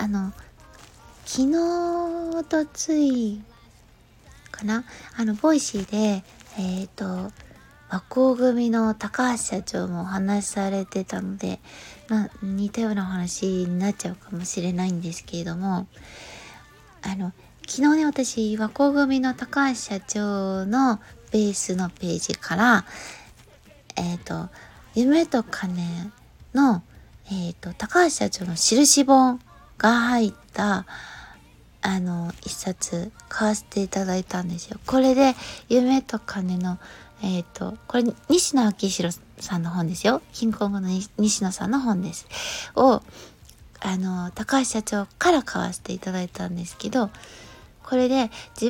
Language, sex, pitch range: Japanese, female, 185-250 Hz